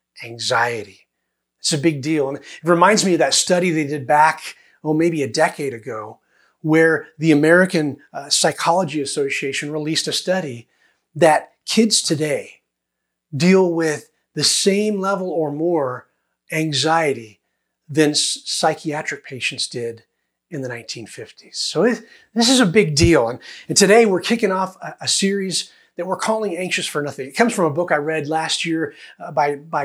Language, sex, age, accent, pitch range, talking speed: English, male, 30-49, American, 150-195 Hz, 165 wpm